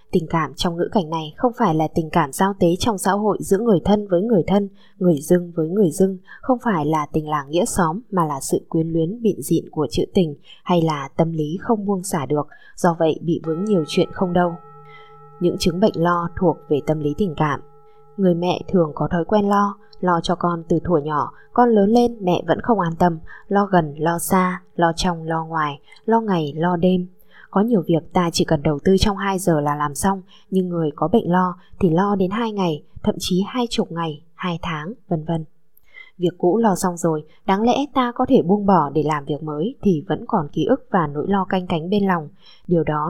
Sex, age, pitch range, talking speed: female, 20-39, 165-200 Hz, 230 wpm